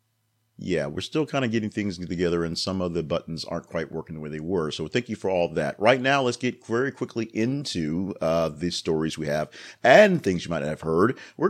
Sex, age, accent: male, 40-59, American